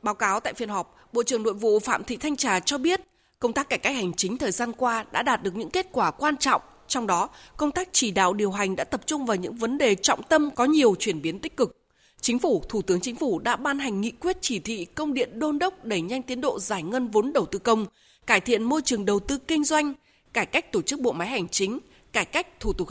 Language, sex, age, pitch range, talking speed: Vietnamese, female, 20-39, 205-285 Hz, 265 wpm